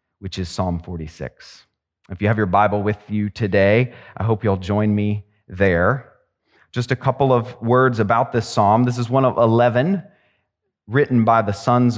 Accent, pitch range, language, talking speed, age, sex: American, 95-125 Hz, English, 175 wpm, 30-49, male